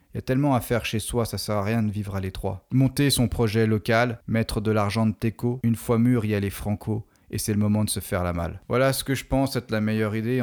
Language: French